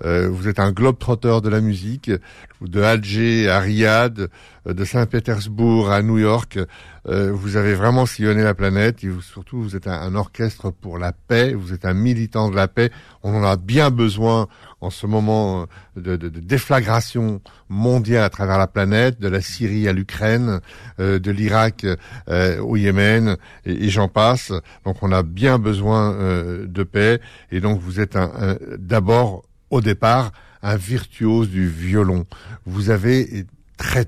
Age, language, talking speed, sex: 60-79, French, 165 wpm, male